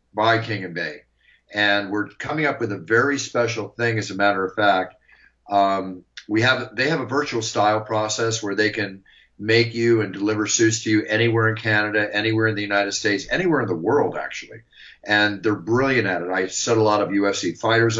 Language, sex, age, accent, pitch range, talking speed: English, male, 40-59, American, 100-115 Hz, 205 wpm